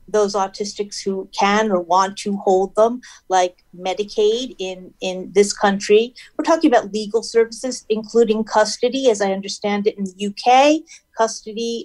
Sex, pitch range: female, 210-270 Hz